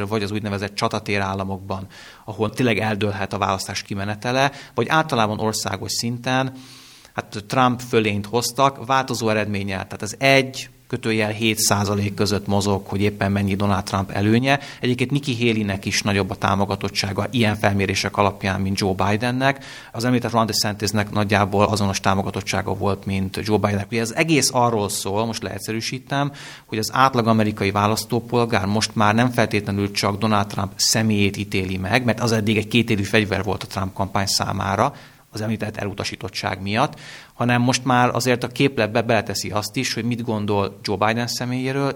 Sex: male